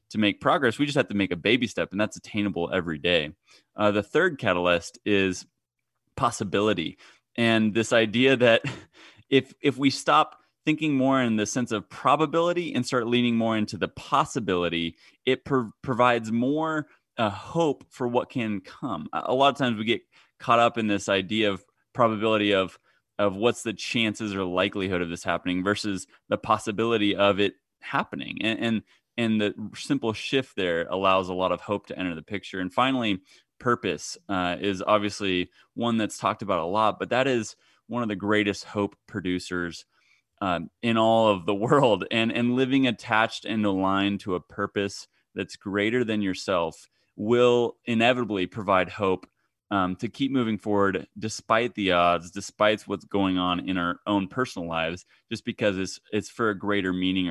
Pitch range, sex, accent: 95-120 Hz, male, American